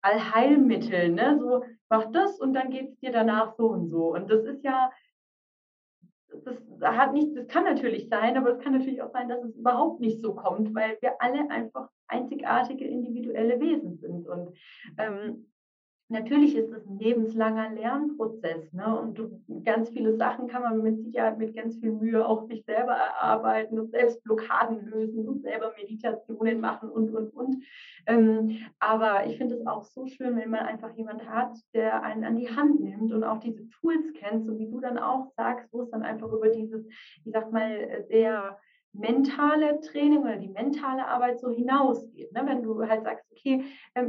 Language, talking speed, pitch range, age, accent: German, 185 wpm, 220-255 Hz, 30-49, German